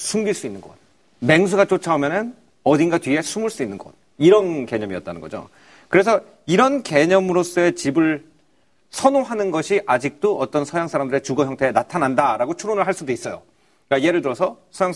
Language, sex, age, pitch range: Korean, male, 40-59, 140-205 Hz